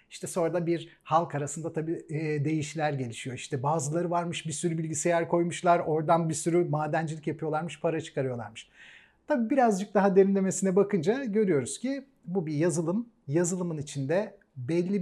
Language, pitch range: Turkish, 155-195 Hz